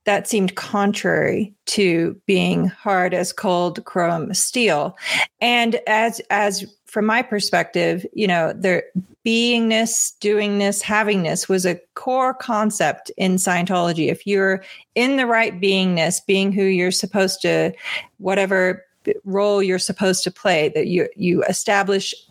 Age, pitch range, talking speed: 40-59, 185-215 Hz, 130 wpm